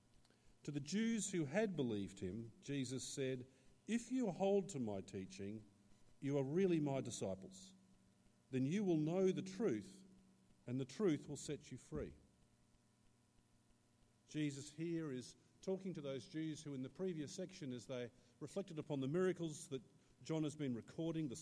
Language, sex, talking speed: English, male, 160 wpm